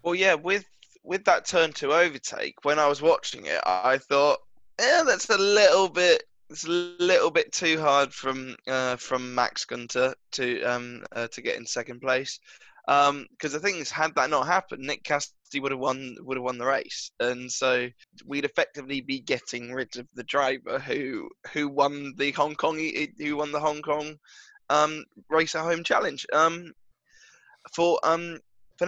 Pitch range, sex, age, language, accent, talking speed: 130-160 Hz, male, 10-29, English, British, 185 wpm